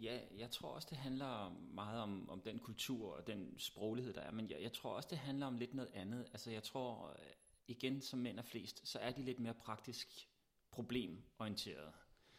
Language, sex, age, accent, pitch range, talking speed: Danish, male, 30-49, native, 105-130 Hz, 205 wpm